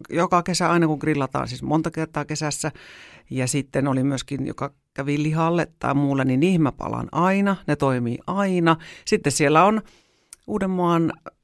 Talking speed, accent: 150 wpm, native